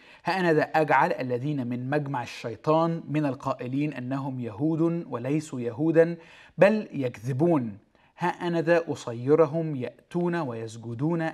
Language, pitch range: Arabic, 125-165 Hz